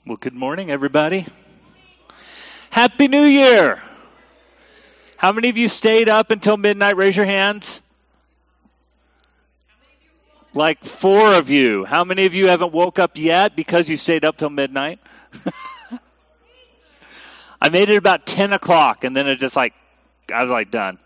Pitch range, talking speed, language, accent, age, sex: 125-185 Hz, 145 wpm, English, American, 40-59, male